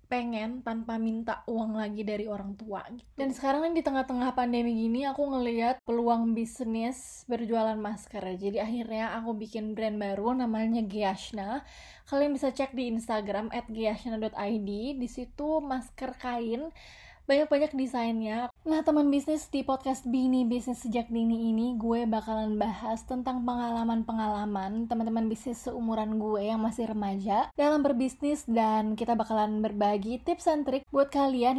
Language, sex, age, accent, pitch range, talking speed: Indonesian, female, 20-39, native, 220-265 Hz, 140 wpm